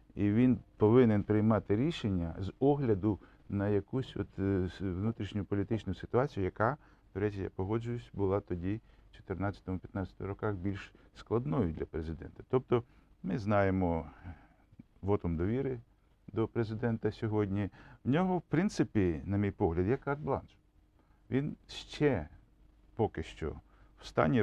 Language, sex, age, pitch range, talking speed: Ukrainian, male, 50-69, 95-115 Hz, 125 wpm